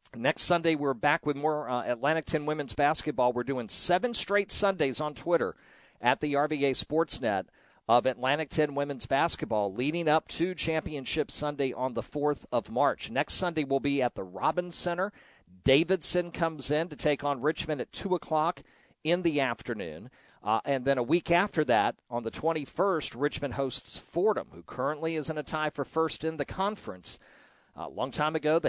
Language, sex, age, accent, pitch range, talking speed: English, male, 50-69, American, 130-160 Hz, 185 wpm